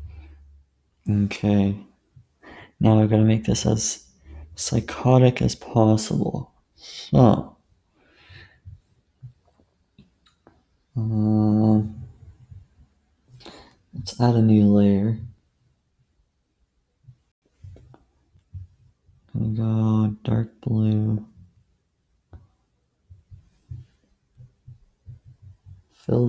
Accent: American